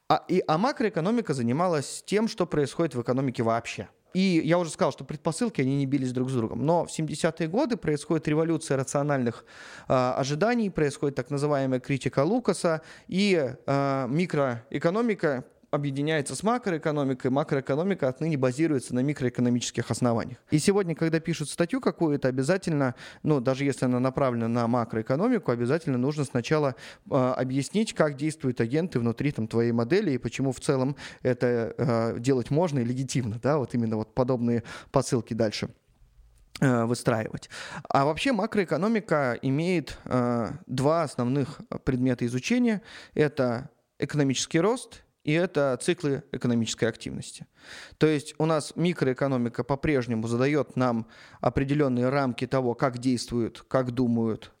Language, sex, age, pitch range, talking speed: Russian, male, 20-39, 125-160 Hz, 135 wpm